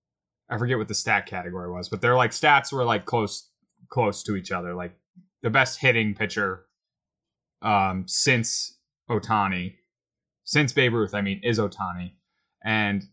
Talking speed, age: 155 wpm, 20-39